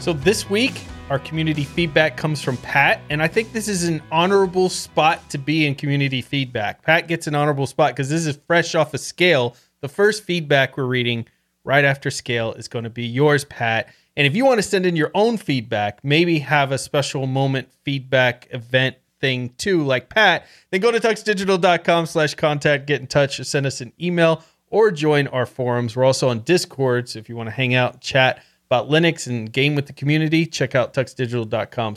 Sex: male